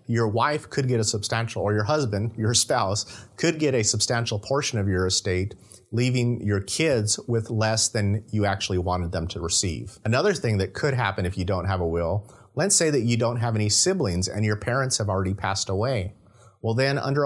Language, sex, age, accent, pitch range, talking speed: English, male, 30-49, American, 105-130 Hz, 210 wpm